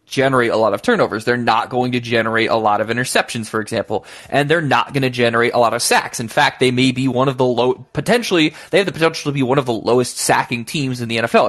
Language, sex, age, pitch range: English, male, 20-39, 120-140 Hz